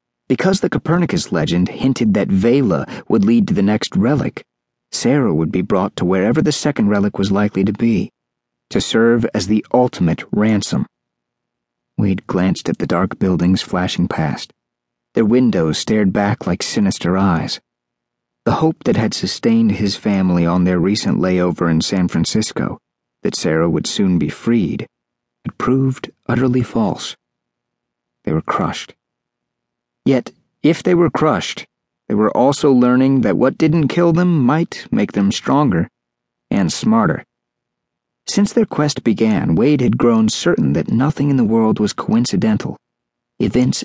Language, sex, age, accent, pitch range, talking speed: English, male, 40-59, American, 90-135 Hz, 150 wpm